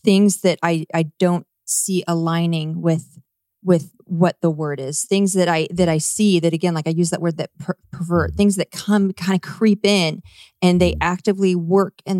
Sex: female